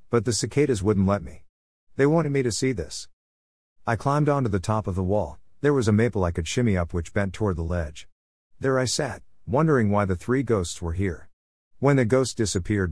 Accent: American